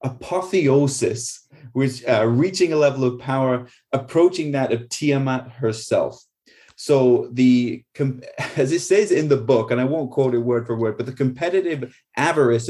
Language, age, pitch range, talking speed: English, 20-39, 115-130 Hz, 155 wpm